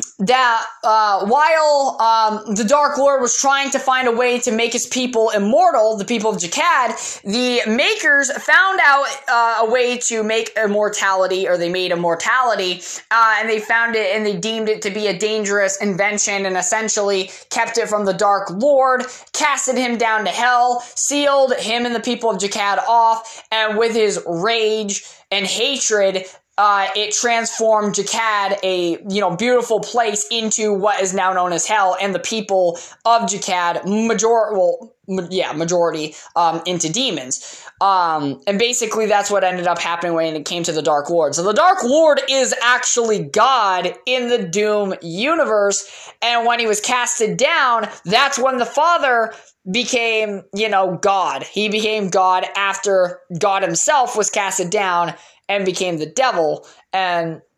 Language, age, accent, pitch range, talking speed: English, 20-39, American, 195-240 Hz, 165 wpm